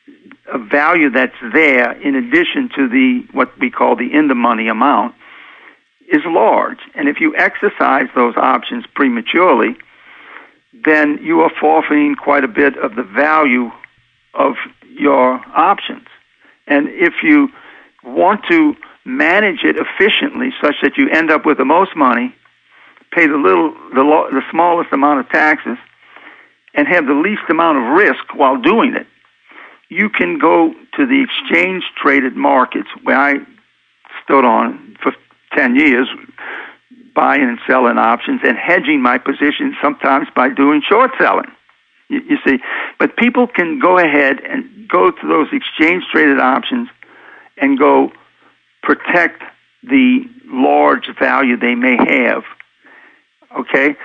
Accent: American